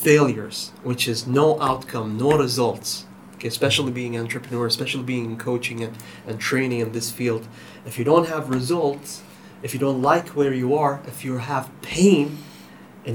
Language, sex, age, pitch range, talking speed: English, male, 30-49, 115-145 Hz, 170 wpm